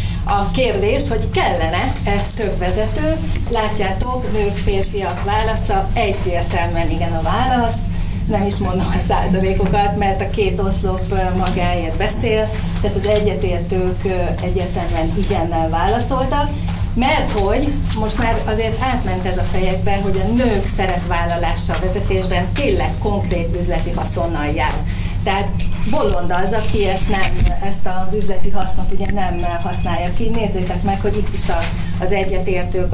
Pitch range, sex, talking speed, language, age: 90-100 Hz, female, 125 wpm, Hungarian, 30-49